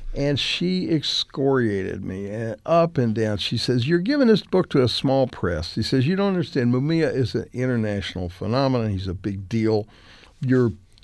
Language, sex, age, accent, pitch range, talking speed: English, male, 60-79, American, 95-130 Hz, 175 wpm